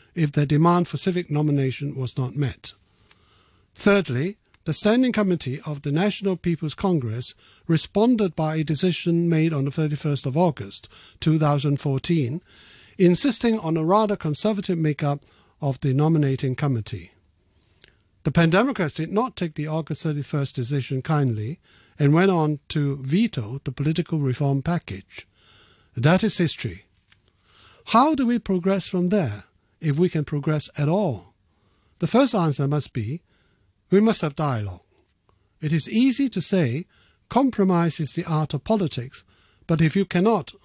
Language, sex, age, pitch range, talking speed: English, male, 60-79, 120-180 Hz, 145 wpm